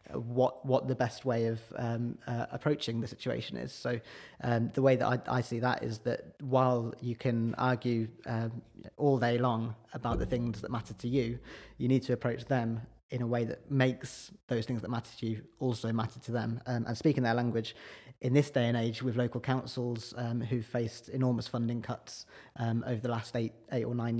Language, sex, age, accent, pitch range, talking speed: English, male, 20-39, British, 115-130 Hz, 215 wpm